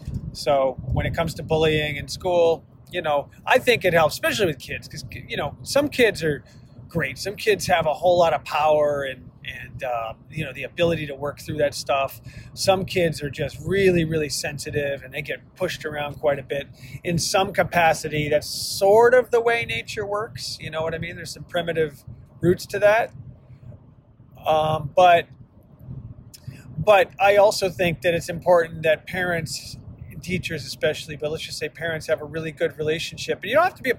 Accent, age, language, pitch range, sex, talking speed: American, 30-49, English, 130-165 Hz, male, 195 wpm